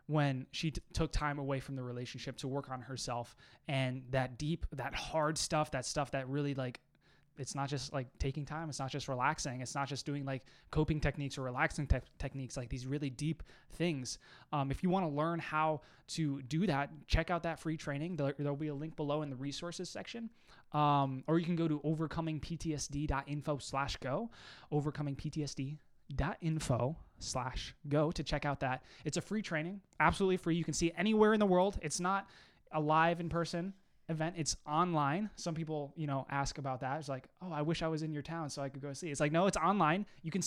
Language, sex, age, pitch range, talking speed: English, male, 20-39, 140-165 Hz, 210 wpm